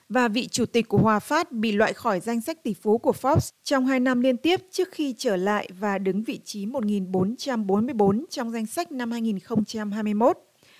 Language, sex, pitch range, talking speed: Vietnamese, female, 210-255 Hz, 195 wpm